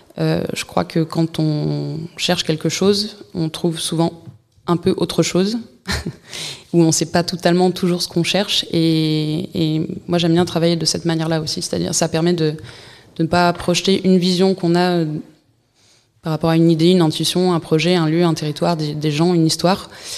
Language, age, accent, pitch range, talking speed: French, 20-39, French, 160-180 Hz, 190 wpm